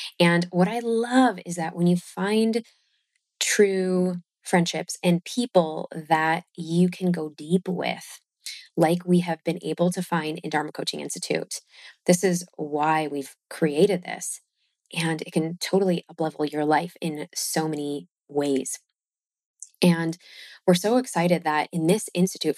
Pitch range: 160-190 Hz